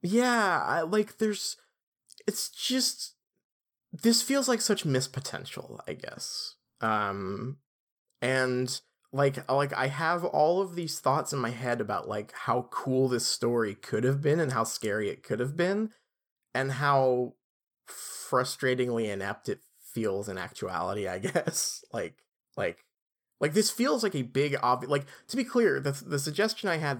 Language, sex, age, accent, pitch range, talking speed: English, male, 20-39, American, 115-145 Hz, 155 wpm